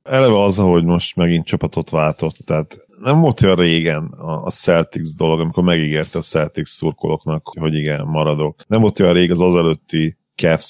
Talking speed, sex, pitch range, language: 170 wpm, male, 80-95 Hz, Hungarian